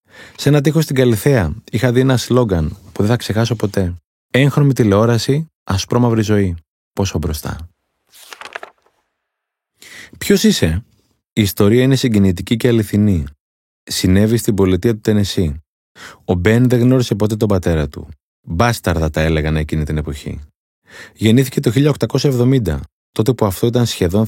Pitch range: 90-120 Hz